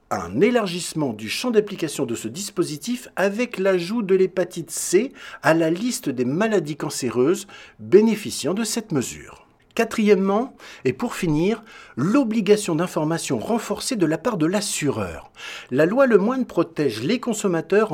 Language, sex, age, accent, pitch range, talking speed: French, male, 60-79, French, 155-225 Hz, 140 wpm